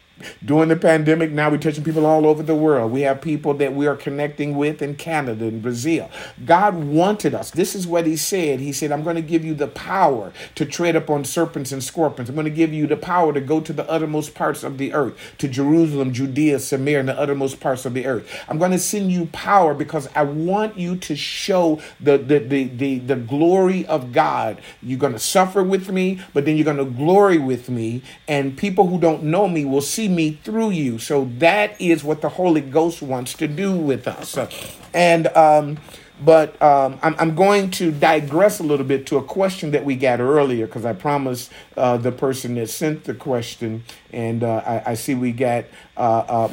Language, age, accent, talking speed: English, 50-69, American, 215 wpm